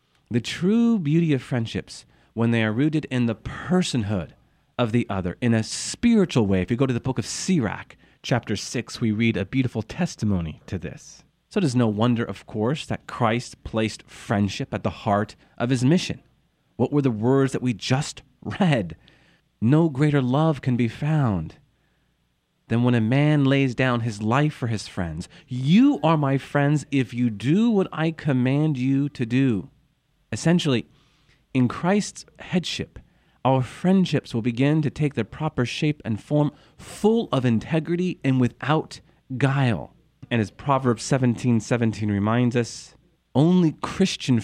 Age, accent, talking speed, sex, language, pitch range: 40-59, American, 165 wpm, male, English, 110-145 Hz